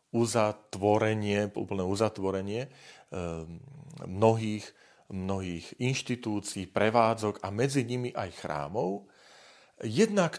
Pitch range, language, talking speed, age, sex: 100-130 Hz, Slovak, 75 wpm, 40-59, male